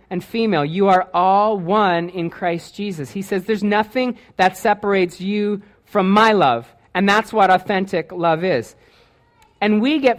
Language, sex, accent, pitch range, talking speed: English, male, American, 185-220 Hz, 165 wpm